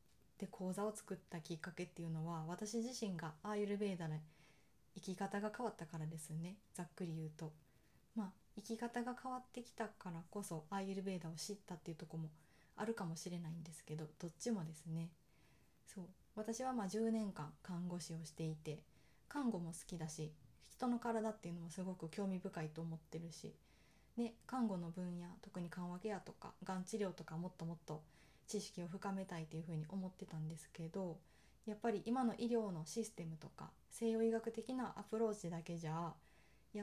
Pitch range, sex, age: 165-210 Hz, female, 20-39